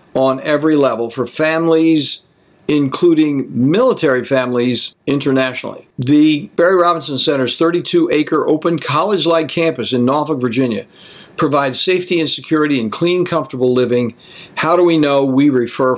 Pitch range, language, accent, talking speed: 120-150 Hz, English, American, 130 wpm